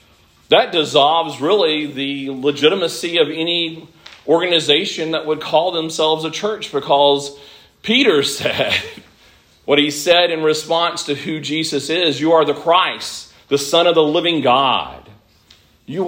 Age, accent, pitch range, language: 40-59, American, 140-185 Hz, English